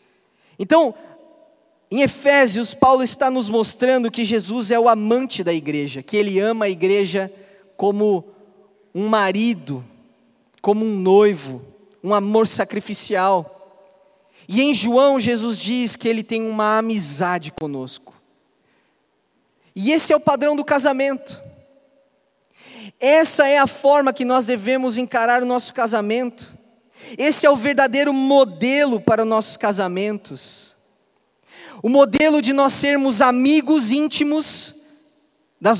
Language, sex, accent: Portuguese, male, Brazilian